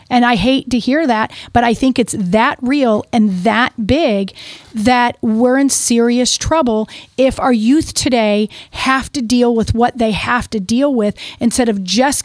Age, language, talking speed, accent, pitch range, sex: 40-59, English, 180 wpm, American, 220-265 Hz, female